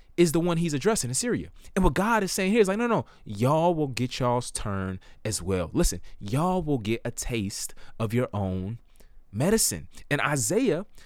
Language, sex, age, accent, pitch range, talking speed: English, male, 20-39, American, 125-205 Hz, 200 wpm